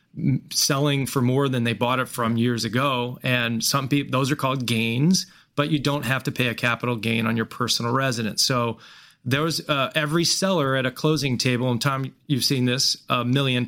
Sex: male